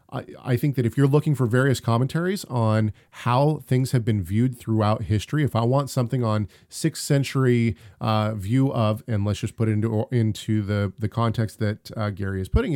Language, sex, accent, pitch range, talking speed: English, male, American, 110-145 Hz, 200 wpm